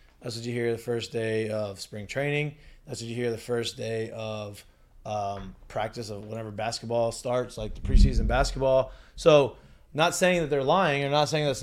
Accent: American